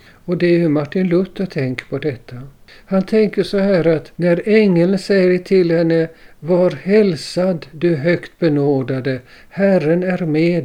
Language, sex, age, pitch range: Swedish, male, 50-69, 140-185 Hz